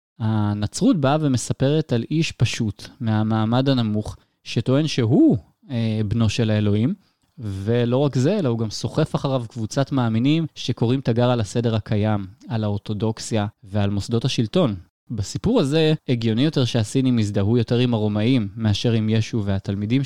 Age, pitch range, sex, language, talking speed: 20-39, 110-135 Hz, male, Hebrew, 140 wpm